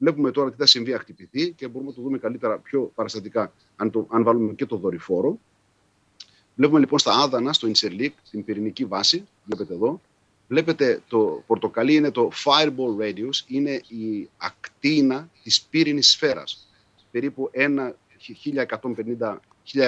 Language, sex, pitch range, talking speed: Greek, male, 110-140 Hz, 145 wpm